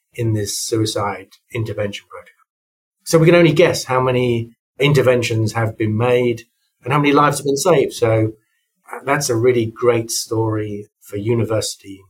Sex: male